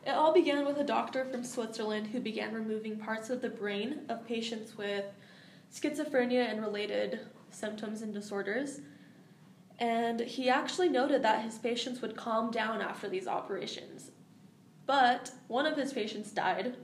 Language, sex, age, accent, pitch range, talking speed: English, female, 10-29, American, 205-235 Hz, 155 wpm